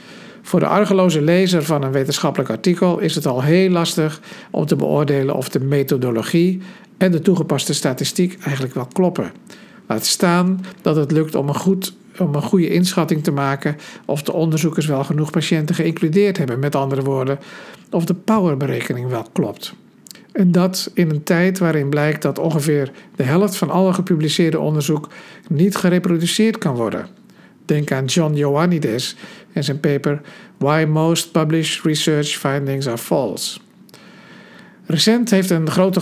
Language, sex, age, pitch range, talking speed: Dutch, male, 50-69, 150-185 Hz, 155 wpm